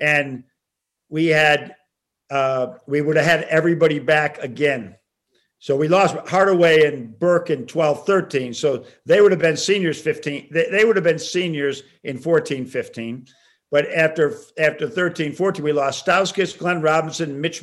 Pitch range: 150-175 Hz